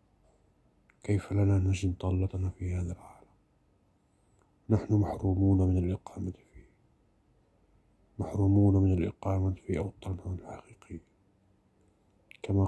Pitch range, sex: 95-105 Hz, male